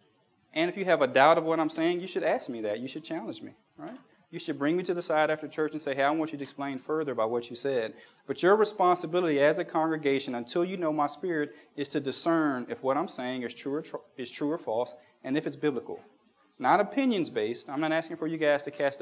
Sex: male